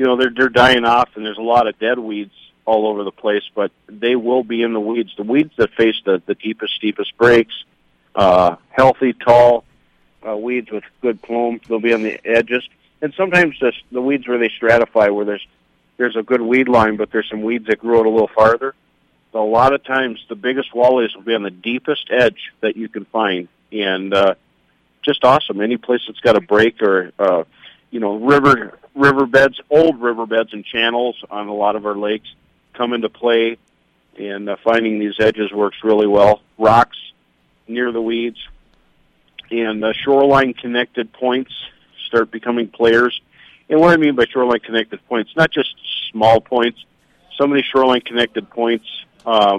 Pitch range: 105-120 Hz